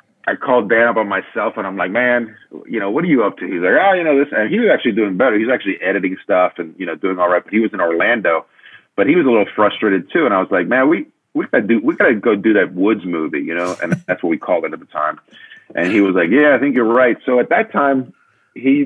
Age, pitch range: 40-59, 90-110 Hz